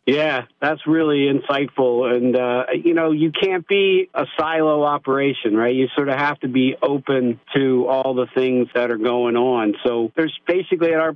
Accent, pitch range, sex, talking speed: American, 120-135 Hz, male, 190 wpm